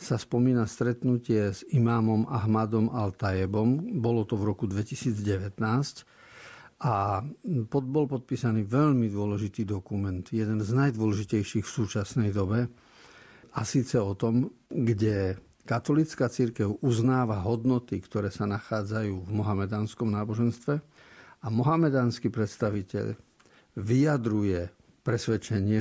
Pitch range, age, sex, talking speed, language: 105-125 Hz, 50-69, male, 100 wpm, Slovak